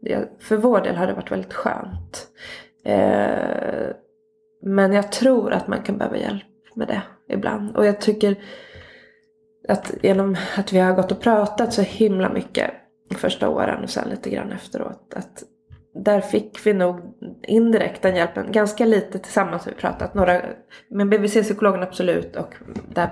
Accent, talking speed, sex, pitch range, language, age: native, 155 wpm, female, 185-220 Hz, Swedish, 20-39